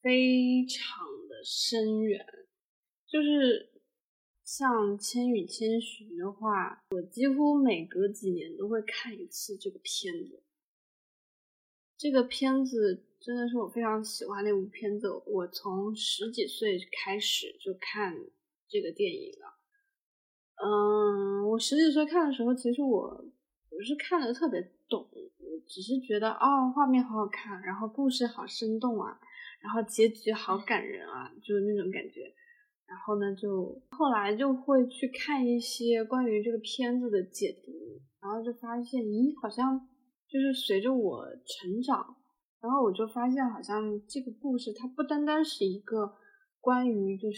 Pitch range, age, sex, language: 210-285 Hz, 20-39, female, Chinese